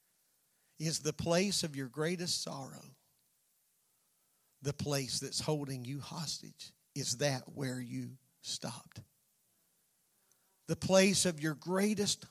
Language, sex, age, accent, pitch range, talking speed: English, male, 40-59, American, 140-180 Hz, 110 wpm